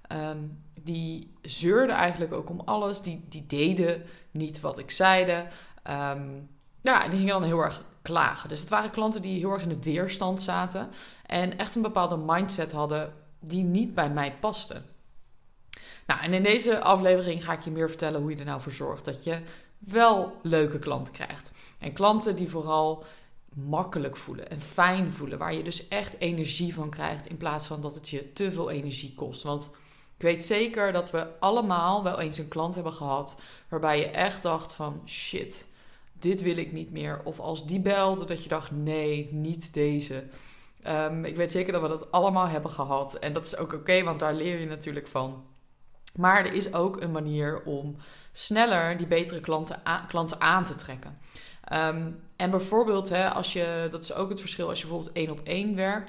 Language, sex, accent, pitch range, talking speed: Dutch, female, Dutch, 150-180 Hz, 195 wpm